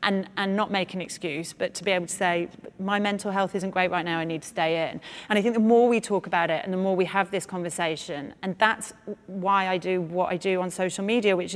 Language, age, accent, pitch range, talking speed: English, 30-49, British, 185-250 Hz, 270 wpm